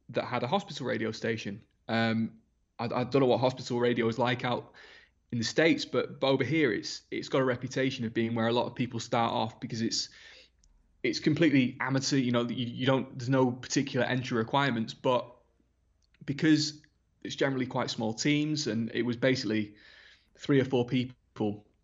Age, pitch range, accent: 20-39, 115-130 Hz, British